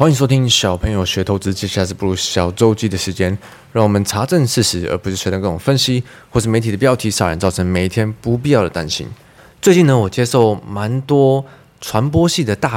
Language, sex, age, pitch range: Chinese, male, 20-39, 100-135 Hz